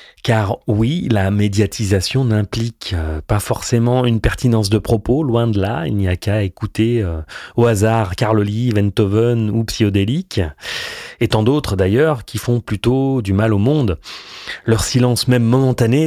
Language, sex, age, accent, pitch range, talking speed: French, male, 30-49, French, 95-120 Hz, 155 wpm